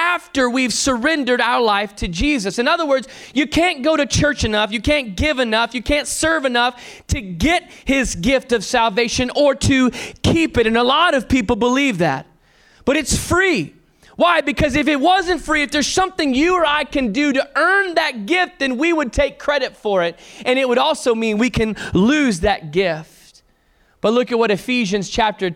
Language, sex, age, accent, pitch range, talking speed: English, male, 20-39, American, 190-265 Hz, 200 wpm